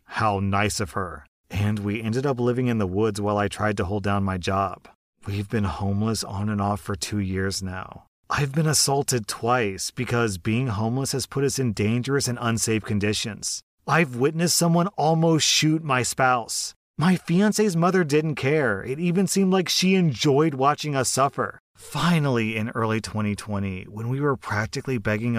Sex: male